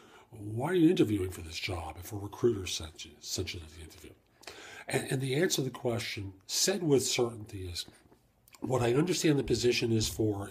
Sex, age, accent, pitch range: male, 40-59, American, 100-135 Hz